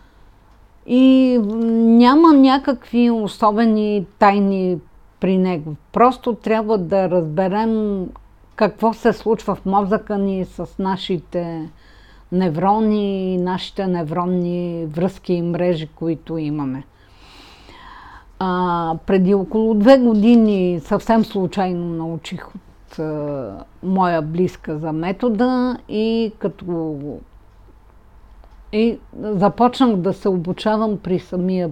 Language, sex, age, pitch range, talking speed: Bulgarian, female, 50-69, 165-215 Hz, 95 wpm